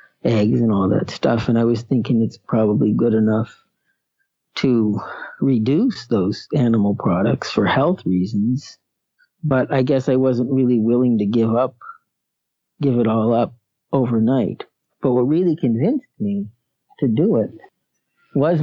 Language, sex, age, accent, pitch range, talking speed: English, male, 50-69, American, 115-140 Hz, 145 wpm